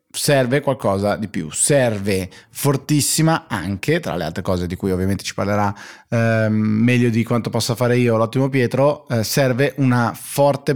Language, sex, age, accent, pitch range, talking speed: Italian, male, 20-39, native, 105-130 Hz, 160 wpm